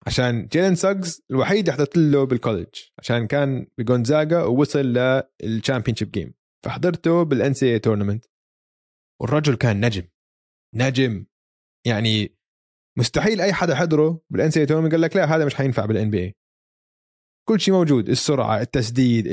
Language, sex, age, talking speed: Arabic, male, 20-39, 135 wpm